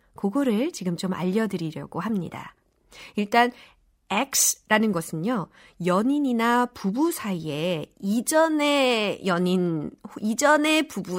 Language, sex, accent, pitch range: Korean, female, native, 180-265 Hz